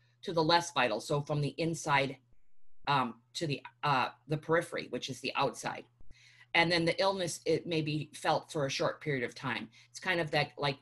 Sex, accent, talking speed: female, American, 205 wpm